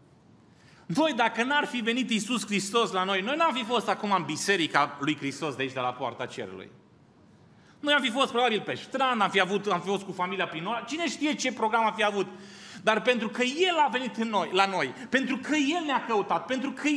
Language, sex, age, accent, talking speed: Romanian, male, 30-49, native, 225 wpm